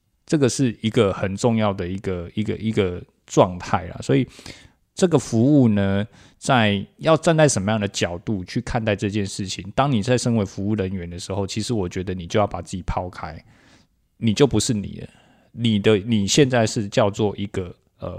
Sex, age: male, 20-39